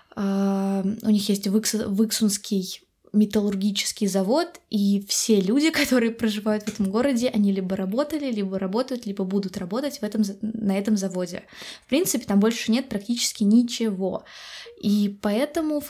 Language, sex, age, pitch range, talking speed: Russian, female, 20-39, 200-230 Hz, 130 wpm